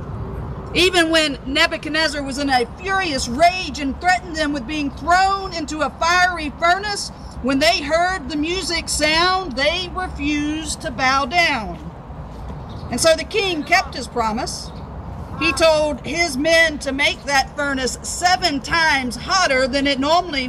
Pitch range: 290-360 Hz